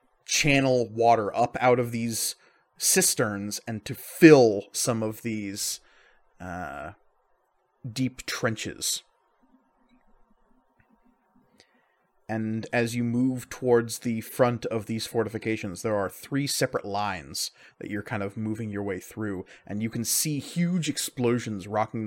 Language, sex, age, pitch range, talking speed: English, male, 30-49, 110-135 Hz, 125 wpm